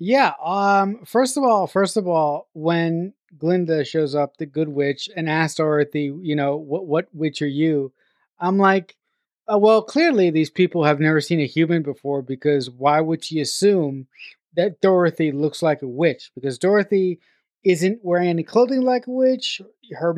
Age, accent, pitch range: 20-39, American, 160-205 Hz